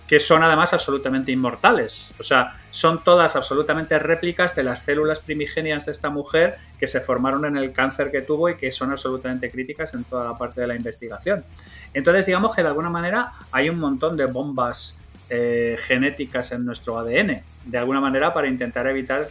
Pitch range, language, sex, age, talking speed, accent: 125-150 Hz, Spanish, male, 30-49, 185 wpm, Spanish